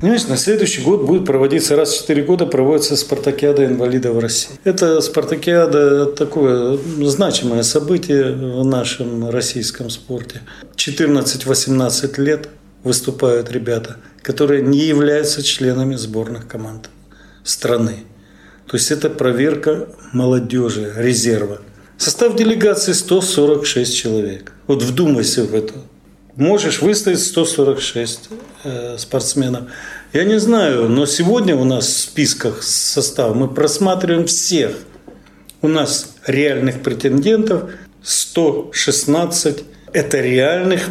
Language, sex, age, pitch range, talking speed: Russian, male, 40-59, 120-150 Hz, 105 wpm